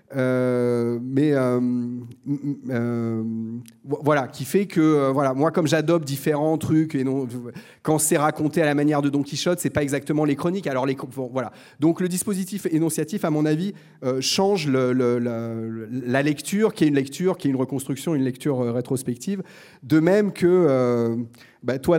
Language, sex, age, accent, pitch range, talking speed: French, male, 30-49, French, 125-165 Hz, 185 wpm